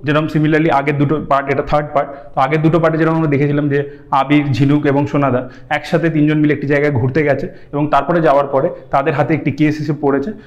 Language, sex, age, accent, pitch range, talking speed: Bengali, male, 30-49, native, 140-170 Hz, 210 wpm